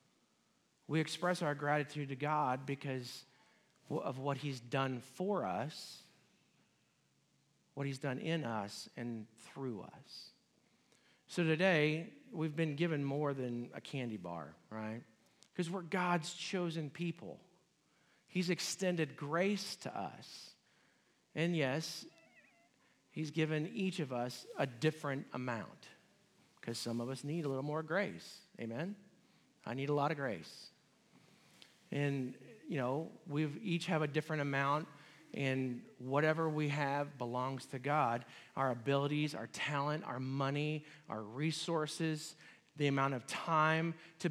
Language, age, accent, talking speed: English, 50-69, American, 130 wpm